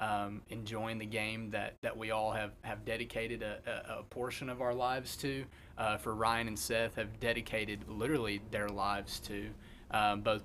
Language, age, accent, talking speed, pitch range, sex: English, 30-49, American, 185 wpm, 110-135 Hz, male